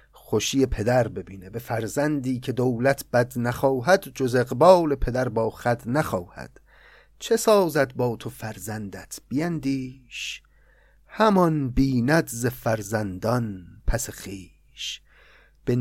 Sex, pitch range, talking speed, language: male, 115-155 Hz, 105 wpm, Persian